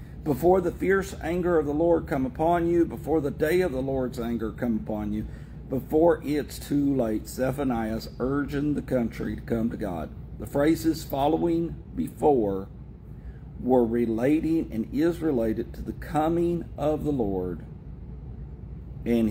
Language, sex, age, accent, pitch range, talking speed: English, male, 50-69, American, 115-155 Hz, 150 wpm